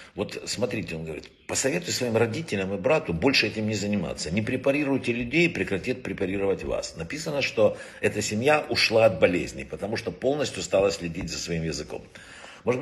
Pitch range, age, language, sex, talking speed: 90-120 Hz, 60-79, Russian, male, 165 wpm